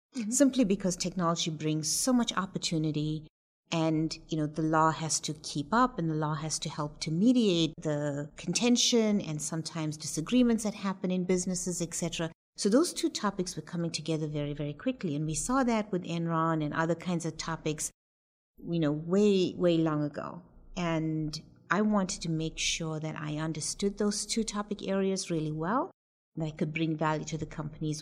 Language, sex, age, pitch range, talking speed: English, female, 50-69, 155-200 Hz, 180 wpm